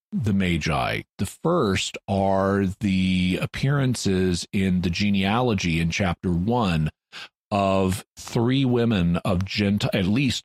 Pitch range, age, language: 90-110 Hz, 40-59, English